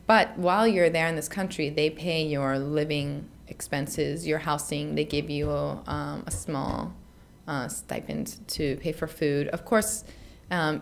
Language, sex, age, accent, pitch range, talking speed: English, female, 20-39, American, 145-175 Hz, 165 wpm